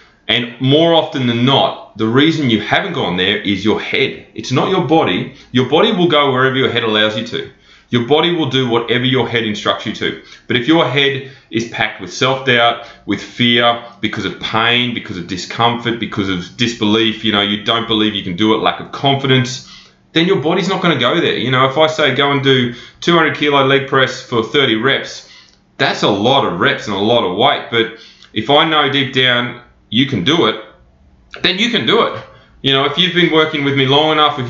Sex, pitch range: male, 110-140 Hz